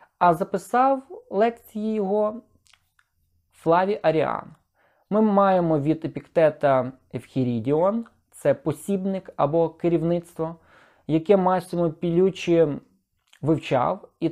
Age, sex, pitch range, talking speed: 20-39, male, 140-195 Hz, 85 wpm